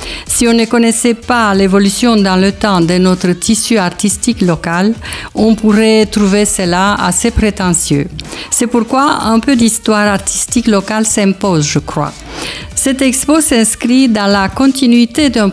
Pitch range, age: 190-235 Hz, 50-69